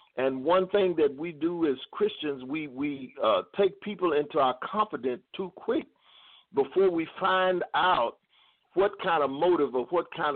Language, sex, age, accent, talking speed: English, male, 50-69, American, 170 wpm